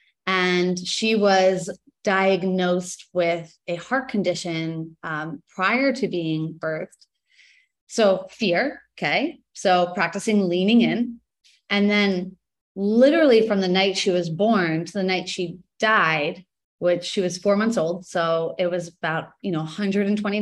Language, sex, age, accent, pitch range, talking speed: English, female, 30-49, American, 175-220 Hz, 140 wpm